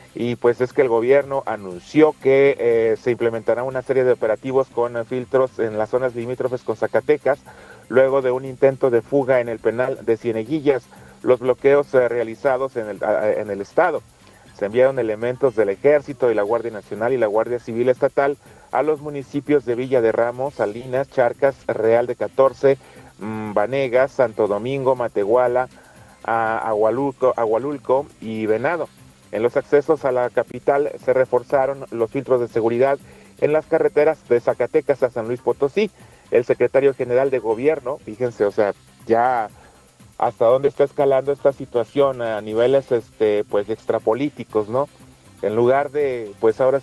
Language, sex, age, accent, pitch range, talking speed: Spanish, male, 40-59, Mexican, 115-140 Hz, 160 wpm